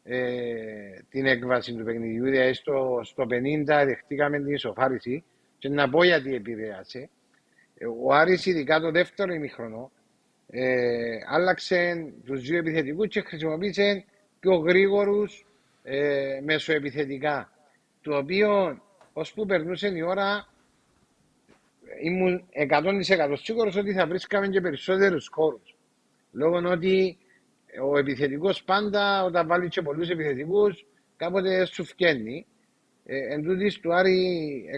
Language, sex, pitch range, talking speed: Greek, male, 140-195 Hz, 115 wpm